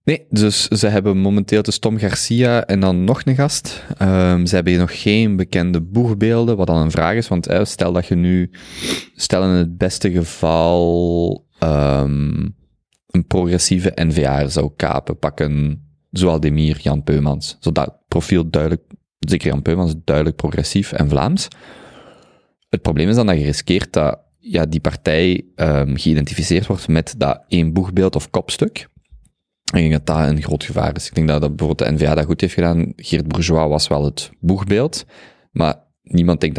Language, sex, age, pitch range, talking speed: Dutch, male, 20-39, 75-90 Hz, 175 wpm